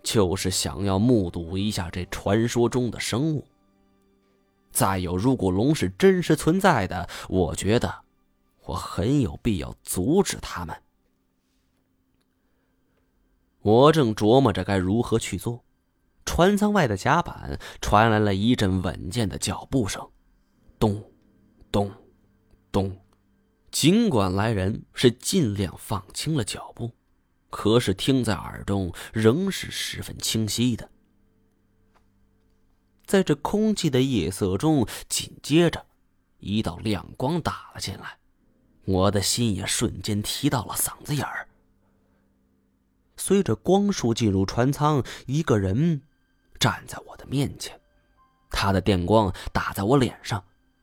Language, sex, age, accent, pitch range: Chinese, male, 20-39, native, 90-120 Hz